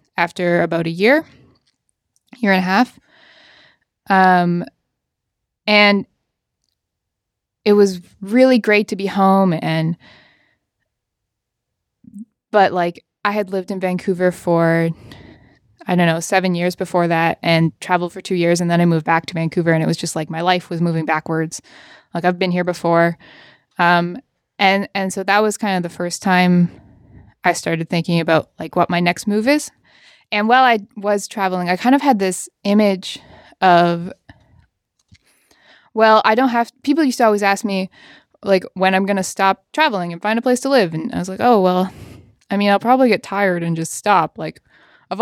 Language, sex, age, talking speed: English, female, 20-39, 175 wpm